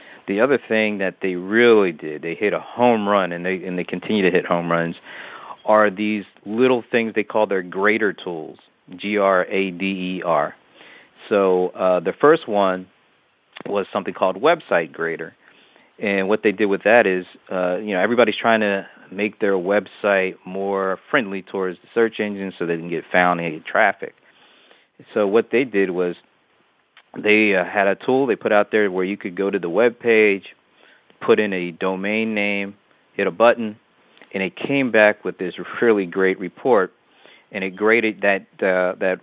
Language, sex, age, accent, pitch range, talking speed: English, male, 40-59, American, 90-105 Hz, 175 wpm